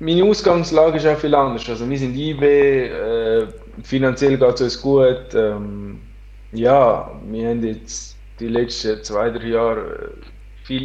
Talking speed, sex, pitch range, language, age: 155 wpm, male, 110-135 Hz, German, 20-39